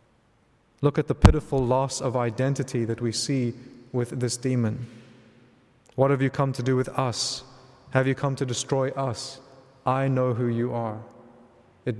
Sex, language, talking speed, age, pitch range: male, English, 165 wpm, 20-39, 120-140 Hz